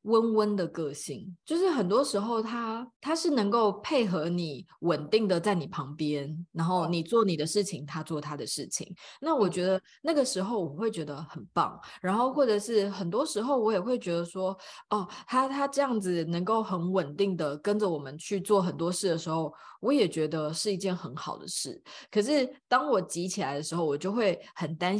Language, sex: Chinese, female